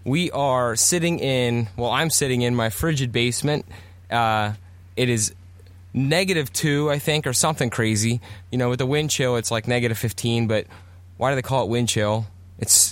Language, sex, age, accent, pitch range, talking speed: English, male, 20-39, American, 100-130 Hz, 185 wpm